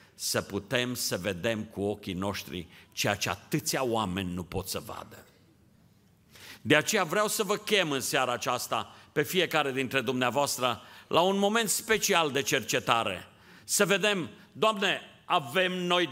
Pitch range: 120-205 Hz